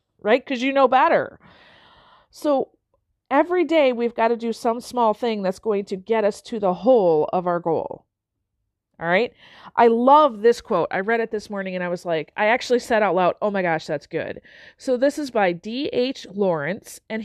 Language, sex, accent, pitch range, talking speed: English, female, American, 195-270 Hz, 205 wpm